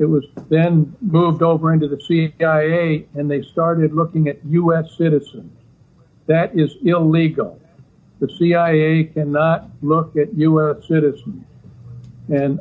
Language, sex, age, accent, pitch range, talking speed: English, male, 60-79, American, 150-170 Hz, 125 wpm